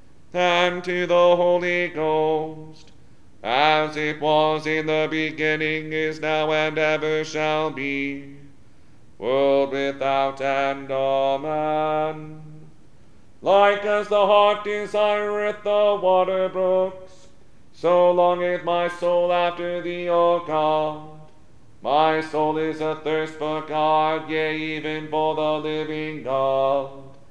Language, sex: English, male